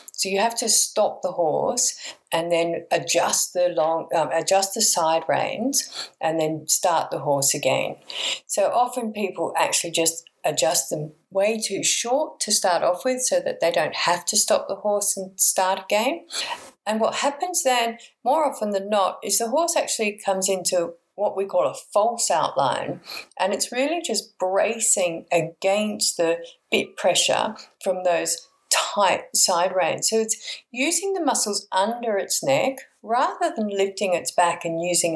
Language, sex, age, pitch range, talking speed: English, female, 50-69, 175-240 Hz, 165 wpm